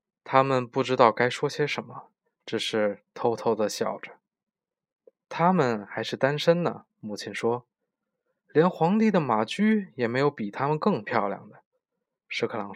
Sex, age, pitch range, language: male, 20-39, 115-180 Hz, Chinese